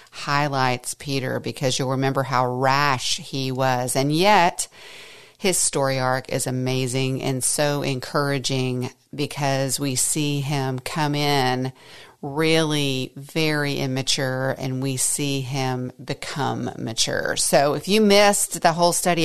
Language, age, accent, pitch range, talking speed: English, 40-59, American, 140-170 Hz, 130 wpm